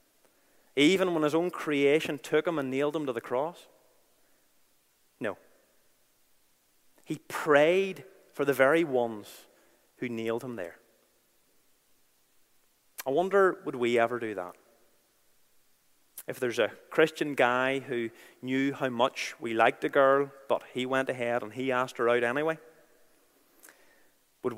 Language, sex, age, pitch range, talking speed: English, male, 30-49, 130-170 Hz, 135 wpm